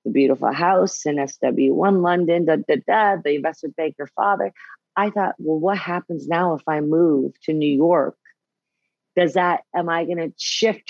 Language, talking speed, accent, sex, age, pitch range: English, 160 wpm, American, female, 40-59, 155-205 Hz